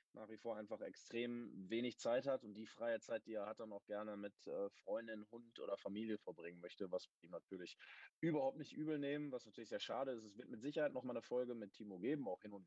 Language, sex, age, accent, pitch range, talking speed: German, male, 20-39, German, 105-135 Hz, 240 wpm